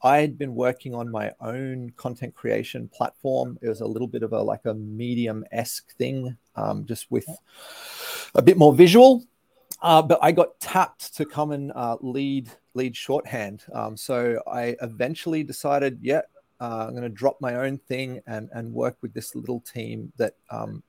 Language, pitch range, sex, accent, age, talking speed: English, 115-145 Hz, male, Australian, 30-49, 180 wpm